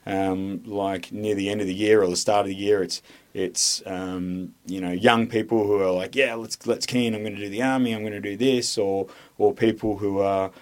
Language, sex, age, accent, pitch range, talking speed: English, male, 20-39, Australian, 95-110 Hz, 250 wpm